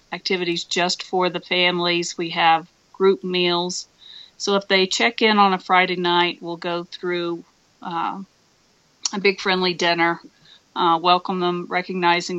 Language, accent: English, American